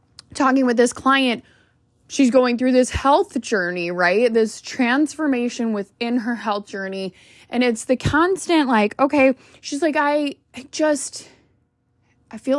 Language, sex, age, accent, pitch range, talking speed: English, female, 20-39, American, 225-300 Hz, 145 wpm